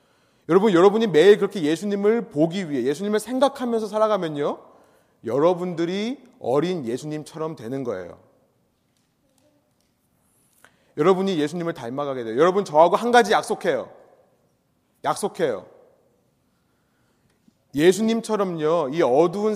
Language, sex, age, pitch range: Korean, male, 30-49, 145-200 Hz